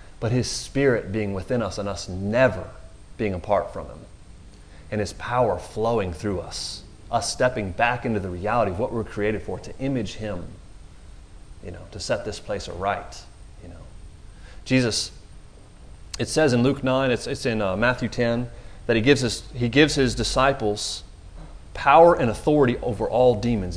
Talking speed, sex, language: 170 wpm, male, English